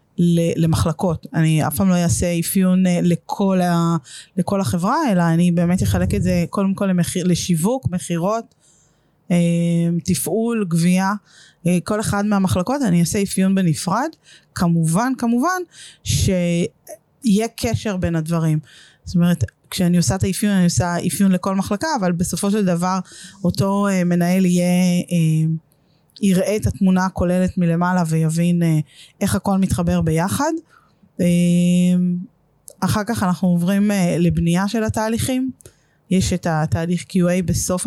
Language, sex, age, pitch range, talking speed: Hebrew, female, 20-39, 170-205 Hz, 120 wpm